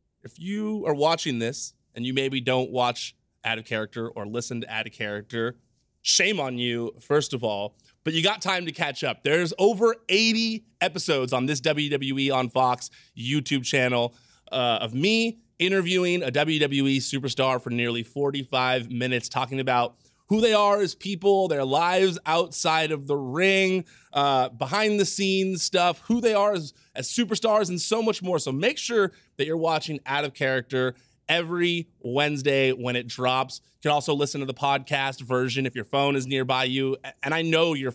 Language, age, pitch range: English, 30-49, 125-170 Hz